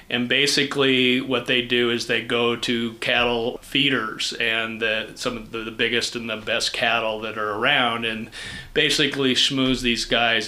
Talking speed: 165 wpm